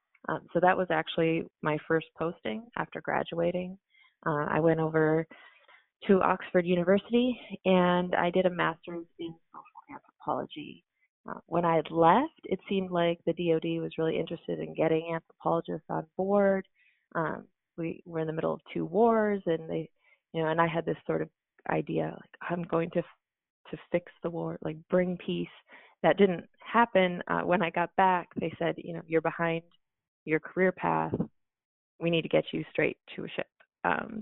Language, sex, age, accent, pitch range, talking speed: English, female, 20-39, American, 165-185 Hz, 175 wpm